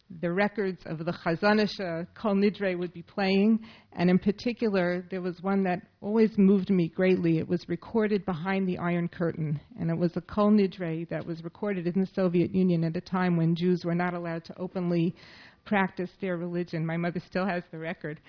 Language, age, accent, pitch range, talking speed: English, 40-59, American, 170-195 Hz, 195 wpm